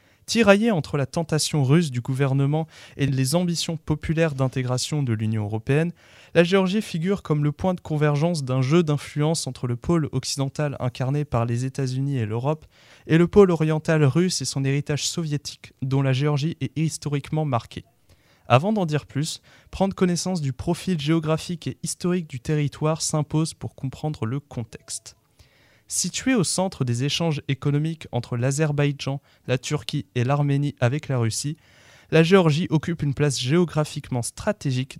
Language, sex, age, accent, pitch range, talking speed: French, male, 20-39, French, 130-160 Hz, 160 wpm